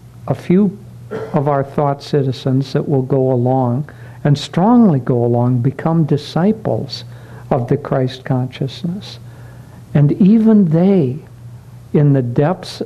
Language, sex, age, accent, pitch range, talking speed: English, male, 60-79, American, 125-145 Hz, 120 wpm